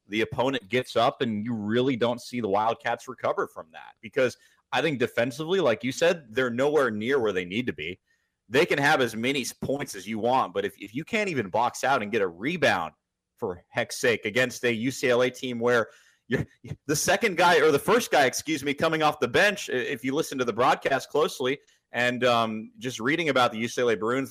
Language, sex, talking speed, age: English, male, 215 wpm, 30-49